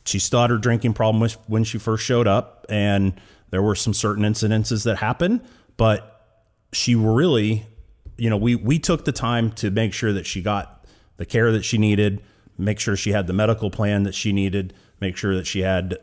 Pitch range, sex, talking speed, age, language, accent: 95-115 Hz, male, 200 wpm, 40-59, English, American